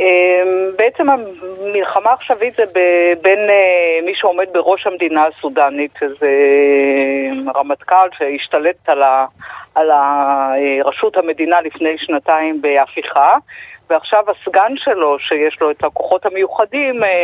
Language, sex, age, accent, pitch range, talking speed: Hebrew, female, 50-69, native, 150-195 Hz, 95 wpm